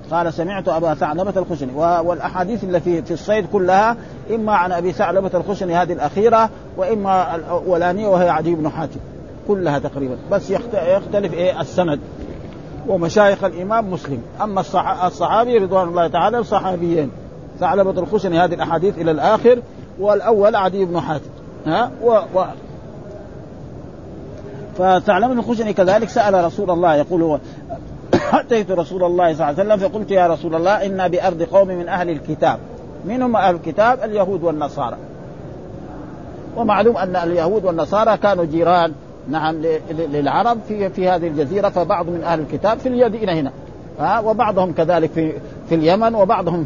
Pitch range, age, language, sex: 165-200 Hz, 50-69, Arabic, male